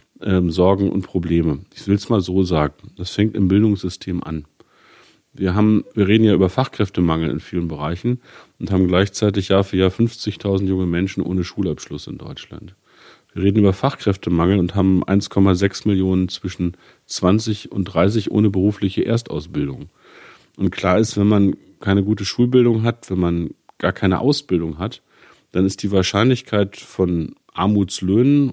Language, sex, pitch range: German, male, 90-105 Hz